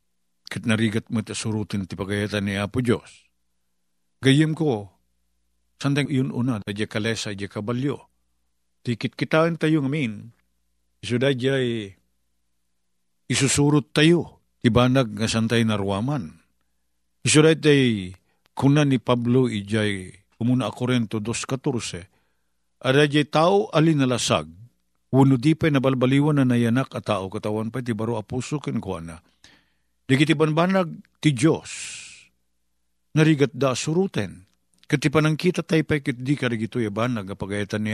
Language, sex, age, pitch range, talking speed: Filipino, male, 50-69, 100-150 Hz, 120 wpm